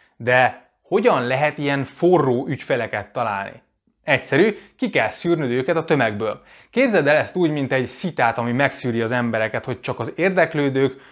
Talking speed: 155 wpm